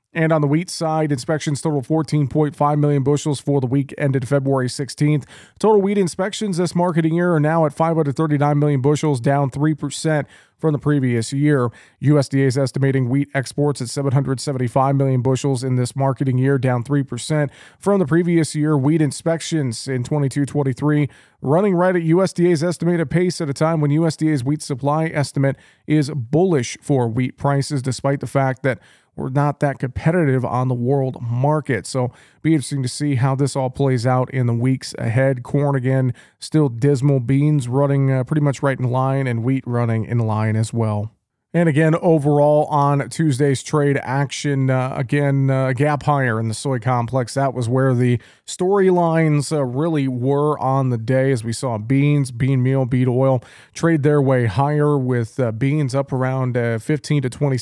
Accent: American